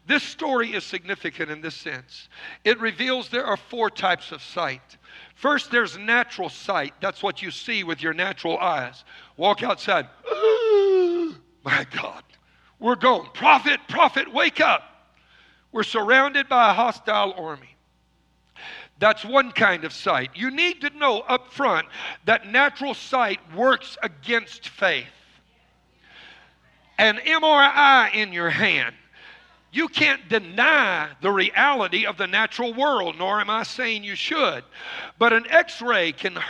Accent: American